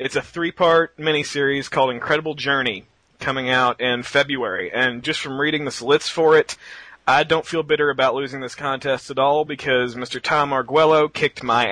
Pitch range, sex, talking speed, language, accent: 125-150 Hz, male, 180 wpm, English, American